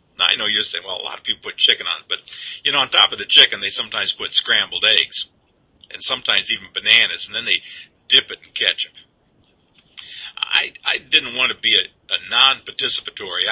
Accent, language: American, English